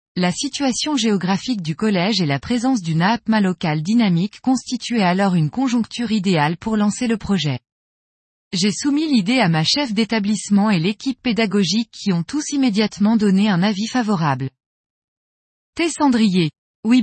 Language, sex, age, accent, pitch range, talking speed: French, female, 20-39, French, 180-245 Hz, 145 wpm